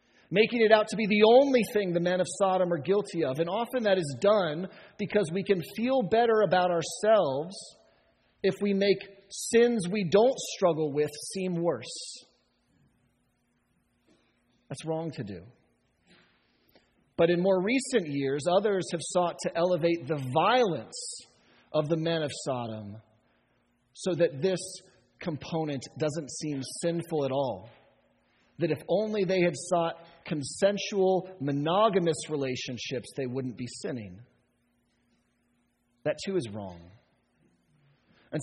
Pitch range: 135-205 Hz